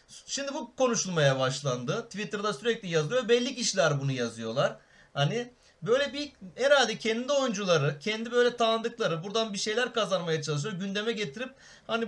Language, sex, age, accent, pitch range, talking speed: Turkish, male, 40-59, native, 155-230 Hz, 140 wpm